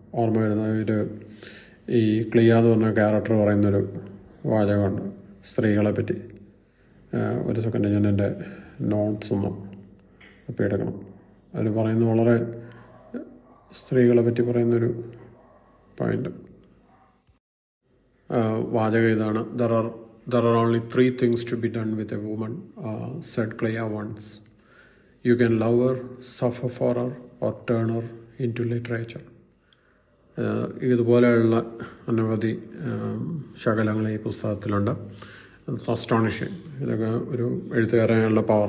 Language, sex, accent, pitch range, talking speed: Malayalam, male, native, 105-115 Hz, 110 wpm